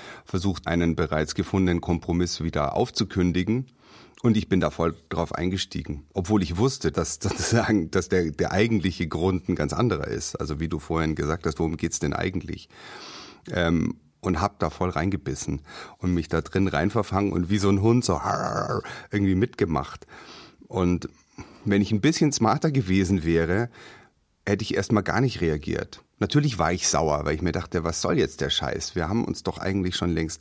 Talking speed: 180 wpm